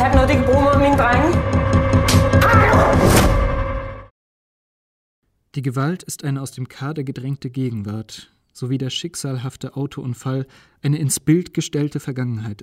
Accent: German